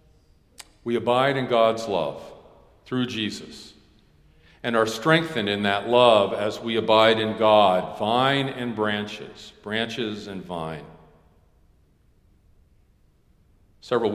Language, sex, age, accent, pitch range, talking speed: English, male, 50-69, American, 100-120 Hz, 105 wpm